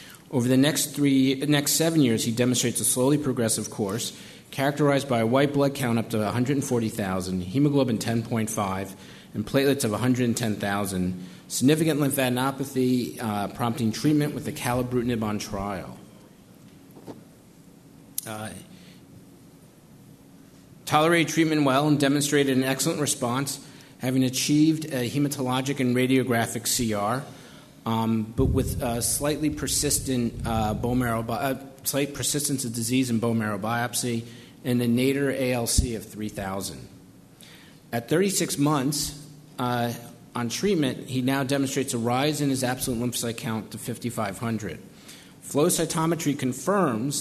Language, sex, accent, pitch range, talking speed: English, male, American, 115-140 Hz, 130 wpm